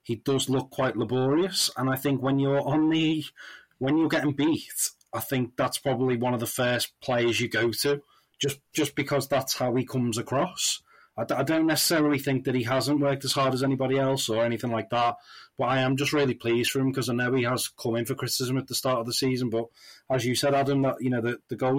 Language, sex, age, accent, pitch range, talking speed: English, male, 30-49, British, 125-140 Hz, 240 wpm